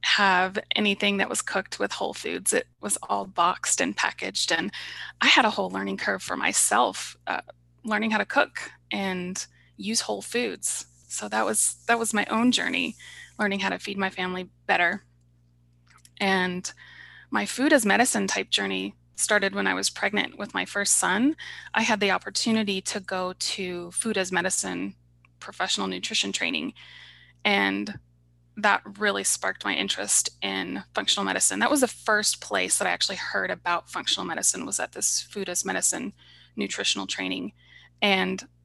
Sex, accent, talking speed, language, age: female, American, 165 wpm, English, 20-39